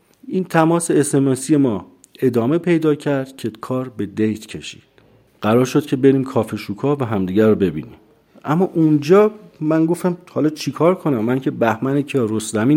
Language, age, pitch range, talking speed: Persian, 50-69, 115-150 Hz, 165 wpm